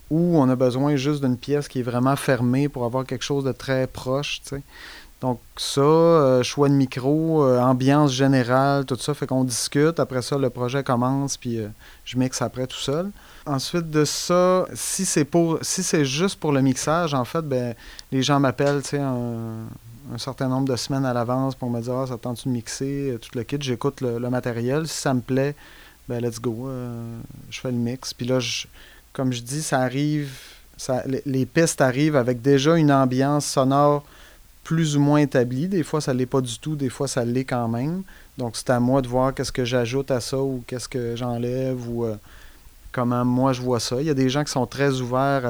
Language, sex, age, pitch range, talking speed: French, male, 30-49, 125-140 Hz, 220 wpm